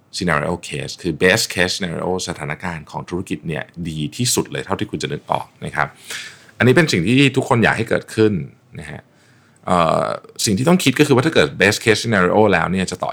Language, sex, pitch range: Thai, male, 90-120 Hz